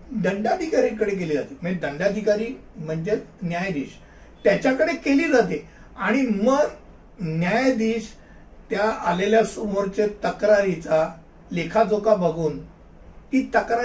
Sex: male